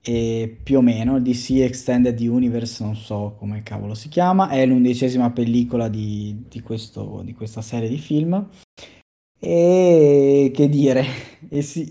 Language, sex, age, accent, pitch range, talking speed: Italian, male, 20-39, native, 110-135 Hz, 145 wpm